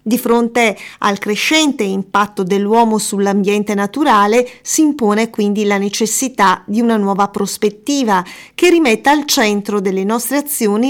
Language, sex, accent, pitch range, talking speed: Italian, female, native, 205-245 Hz, 130 wpm